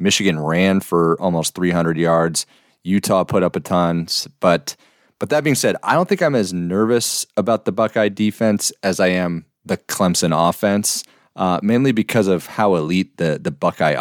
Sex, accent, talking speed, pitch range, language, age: male, American, 175 wpm, 85-100 Hz, English, 30-49